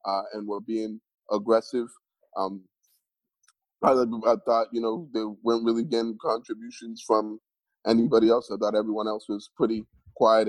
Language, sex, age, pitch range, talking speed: English, male, 20-39, 105-125 Hz, 150 wpm